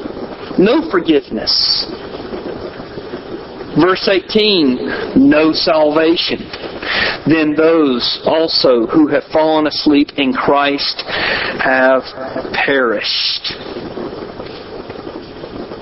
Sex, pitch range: male, 140-200 Hz